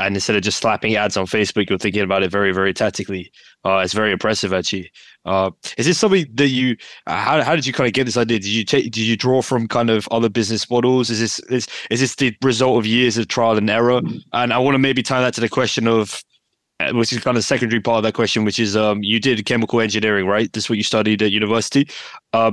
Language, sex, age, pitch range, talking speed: English, male, 20-39, 105-120 Hz, 260 wpm